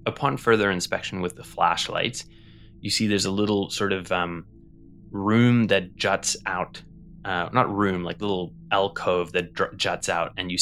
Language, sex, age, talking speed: English, male, 20-39, 170 wpm